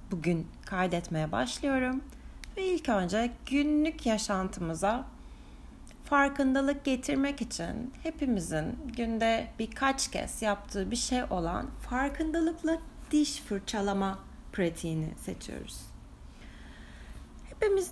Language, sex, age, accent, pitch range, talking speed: Turkish, female, 30-49, native, 195-285 Hz, 85 wpm